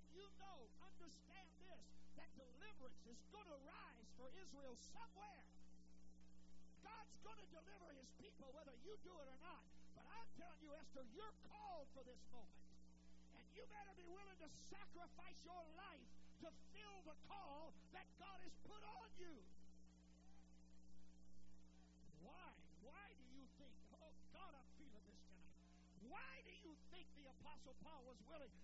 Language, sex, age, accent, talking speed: English, male, 50-69, American, 155 wpm